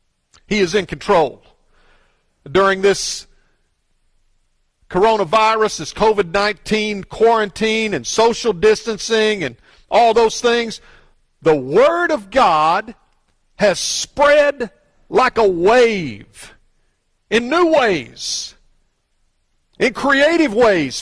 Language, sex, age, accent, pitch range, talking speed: English, male, 50-69, American, 180-260 Hz, 90 wpm